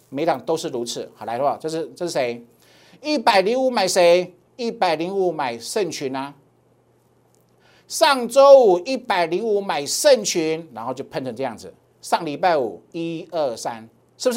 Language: Chinese